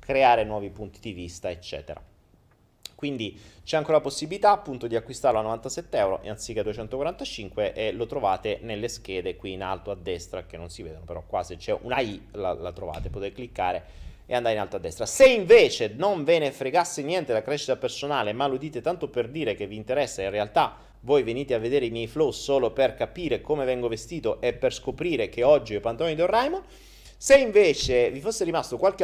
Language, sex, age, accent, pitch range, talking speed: Italian, male, 30-49, native, 120-180 Hz, 210 wpm